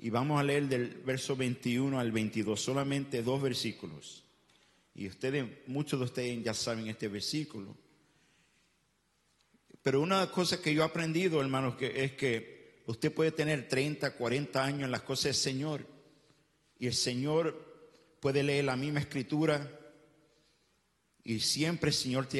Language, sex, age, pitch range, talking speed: English, male, 50-69, 115-145 Hz, 150 wpm